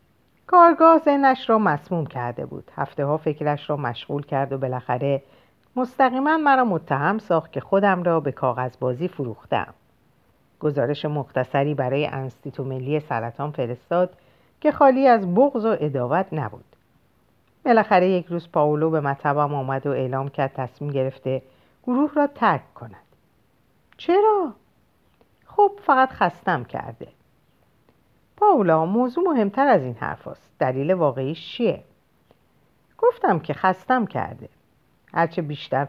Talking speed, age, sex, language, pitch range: 125 wpm, 50-69, female, Persian, 130-185 Hz